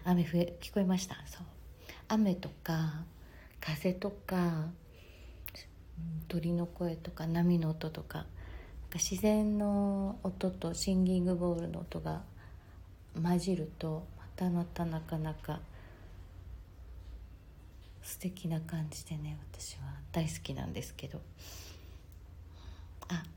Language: Japanese